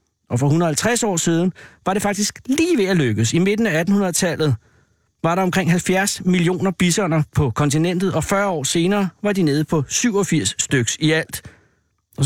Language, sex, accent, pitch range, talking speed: Danish, male, native, 145-185 Hz, 180 wpm